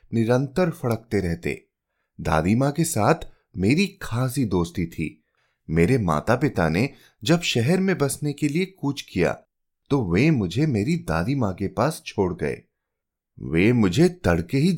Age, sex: 30-49, male